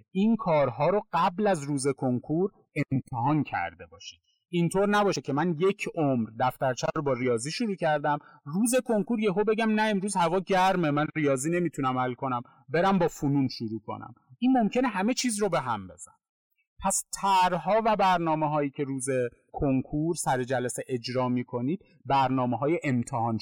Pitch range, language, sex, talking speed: 130-195 Hz, Persian, male, 165 wpm